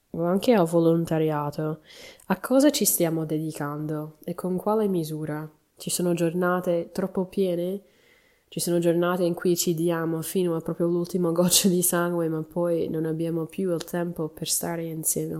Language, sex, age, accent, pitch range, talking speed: Italian, female, 20-39, native, 155-175 Hz, 160 wpm